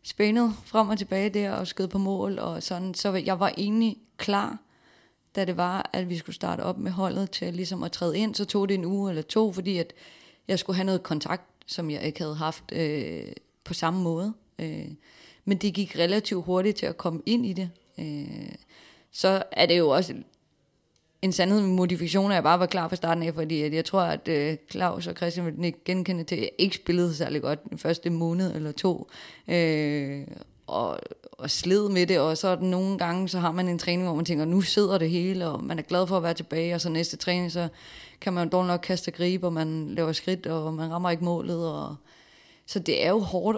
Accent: native